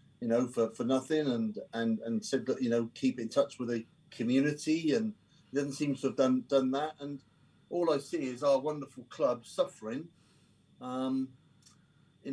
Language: English